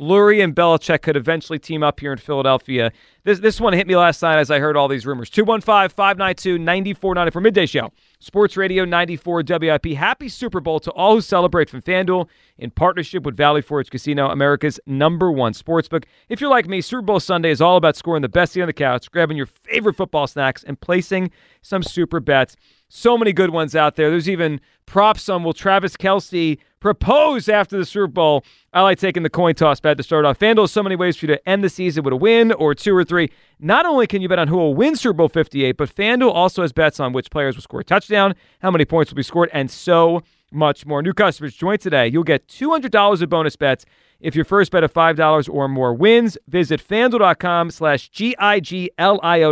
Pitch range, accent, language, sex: 150-195 Hz, American, English, male